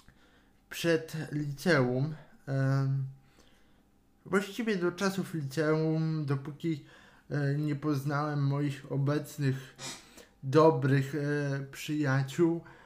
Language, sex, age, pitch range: Polish, male, 20-39, 135-165 Hz